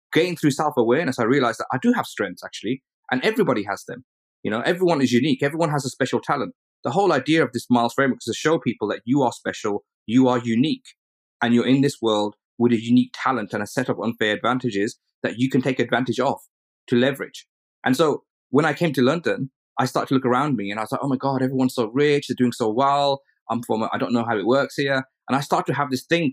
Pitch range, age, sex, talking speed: 115-140 Hz, 30-49, male, 255 wpm